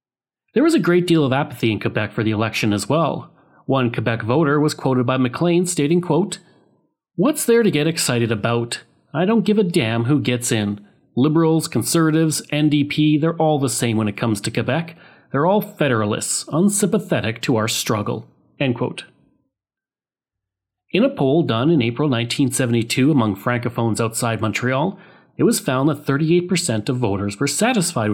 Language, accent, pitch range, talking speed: English, Canadian, 120-170 Hz, 165 wpm